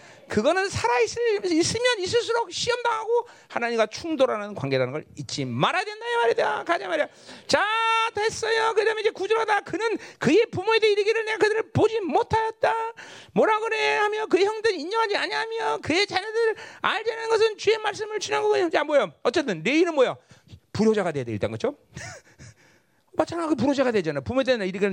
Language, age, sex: Korean, 40-59, male